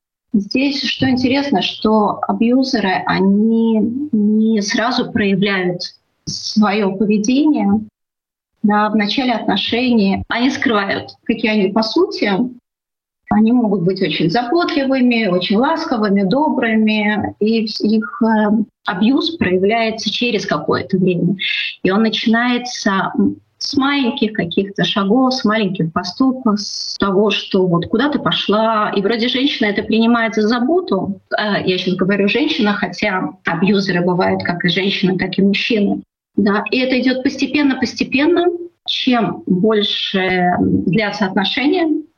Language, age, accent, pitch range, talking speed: Russian, 30-49, native, 195-245 Hz, 115 wpm